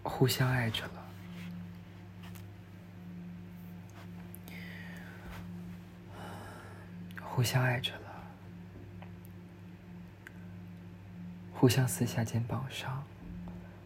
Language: Chinese